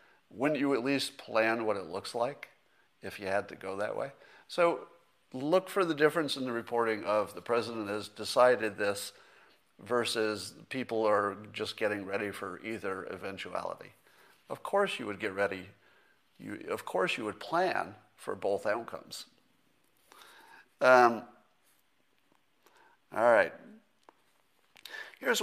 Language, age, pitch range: English, 50-69, 100-130 Hz